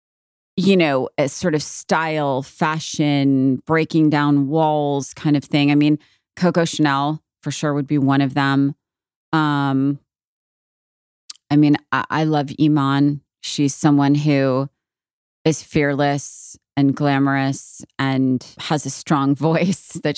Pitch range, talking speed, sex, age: 135-160 Hz, 130 wpm, female, 30-49